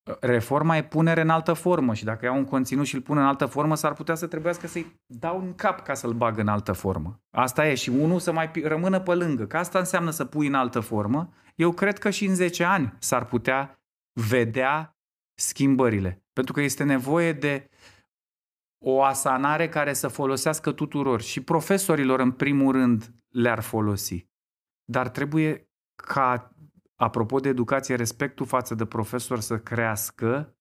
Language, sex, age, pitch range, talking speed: Romanian, male, 30-49, 115-145 Hz, 175 wpm